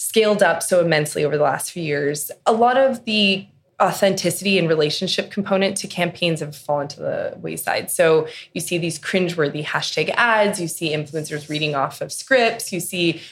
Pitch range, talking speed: 150-195 Hz, 180 wpm